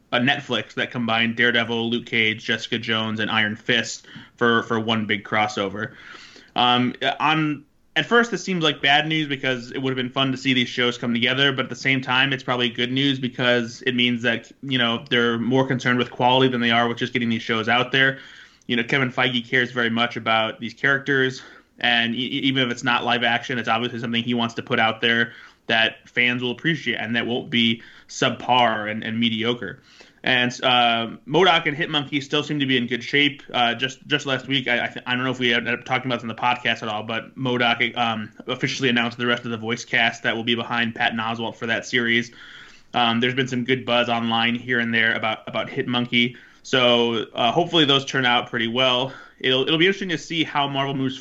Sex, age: male, 20-39